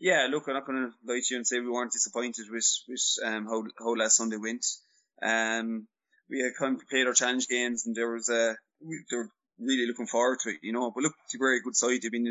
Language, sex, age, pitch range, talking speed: English, male, 20-39, 115-135 Hz, 270 wpm